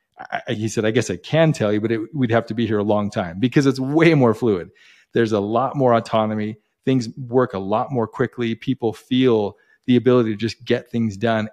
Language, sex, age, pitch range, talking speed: English, male, 40-59, 110-130 Hz, 220 wpm